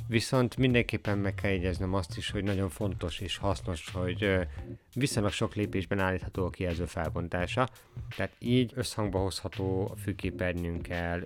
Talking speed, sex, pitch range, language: 140 wpm, male, 90-115 Hz, Hungarian